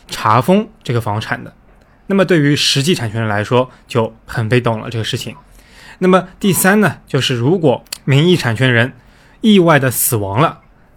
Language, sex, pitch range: Chinese, male, 115-150 Hz